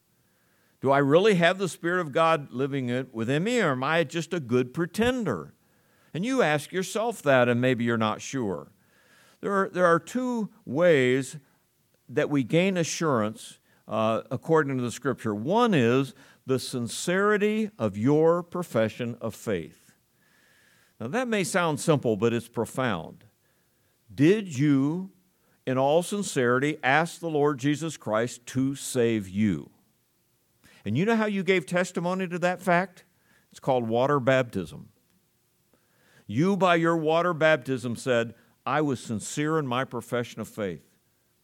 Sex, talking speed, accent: male, 145 wpm, American